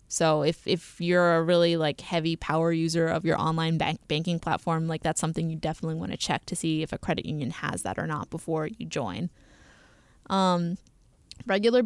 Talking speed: 195 wpm